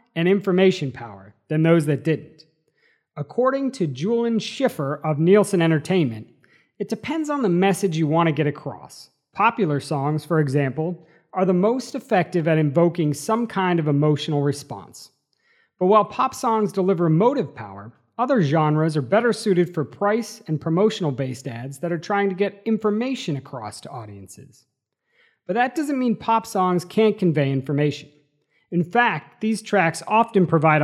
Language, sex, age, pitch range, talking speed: English, male, 40-59, 150-215 Hz, 155 wpm